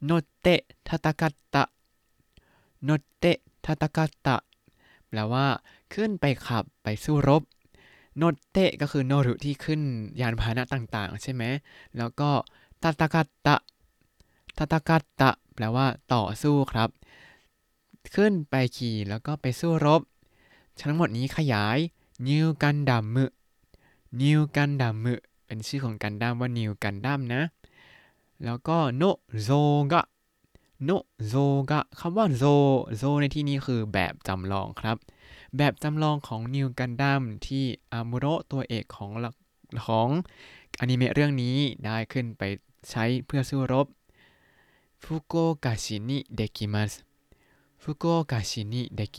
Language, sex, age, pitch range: Thai, male, 20-39, 115-145 Hz